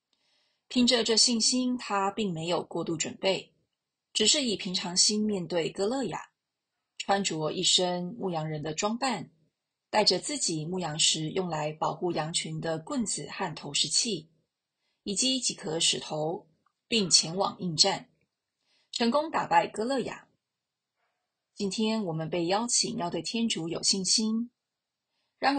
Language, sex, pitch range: Chinese, female, 170-220 Hz